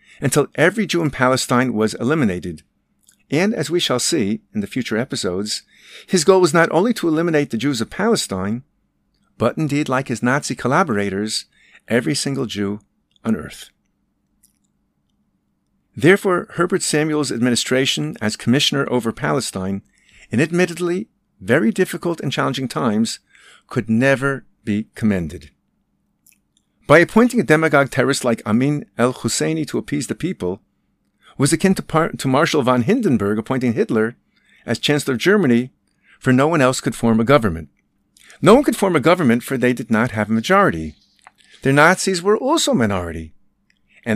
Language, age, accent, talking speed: English, 50-69, American, 150 wpm